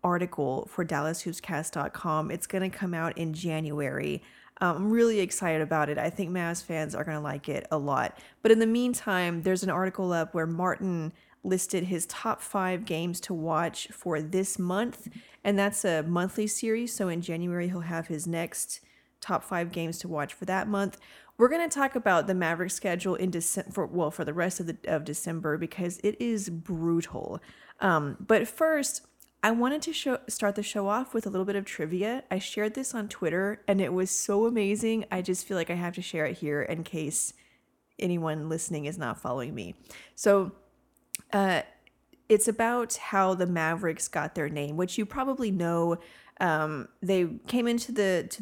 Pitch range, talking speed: 165-205 Hz, 190 wpm